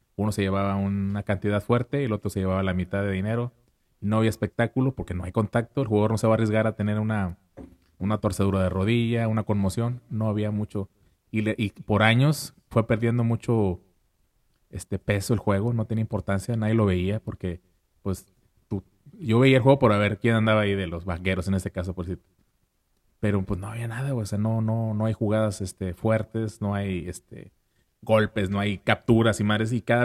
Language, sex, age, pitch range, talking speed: Spanish, male, 30-49, 95-115 Hz, 210 wpm